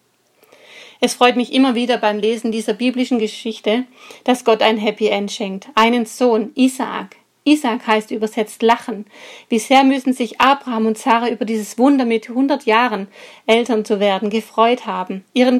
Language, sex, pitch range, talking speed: German, female, 210-245 Hz, 160 wpm